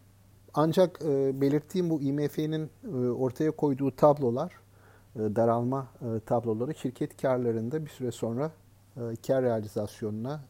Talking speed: 120 wpm